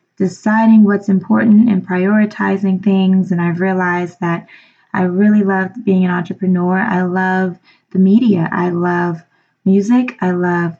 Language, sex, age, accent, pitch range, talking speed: English, female, 20-39, American, 180-215 Hz, 140 wpm